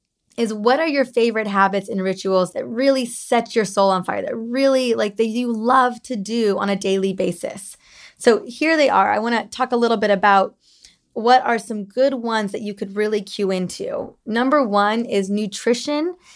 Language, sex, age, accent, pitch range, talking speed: English, female, 20-39, American, 200-250 Hz, 200 wpm